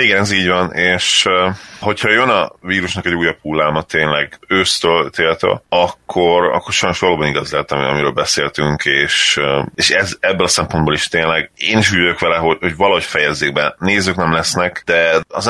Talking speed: 170 wpm